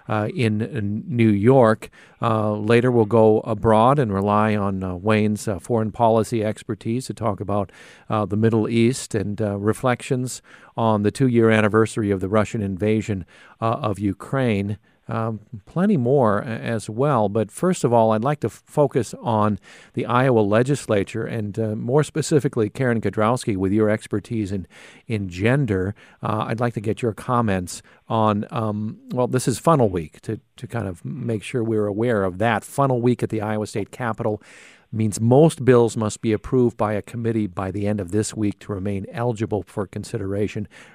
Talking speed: 180 wpm